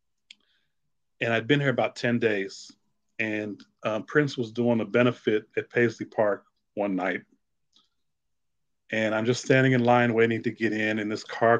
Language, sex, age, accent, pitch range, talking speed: English, male, 30-49, American, 110-130 Hz, 165 wpm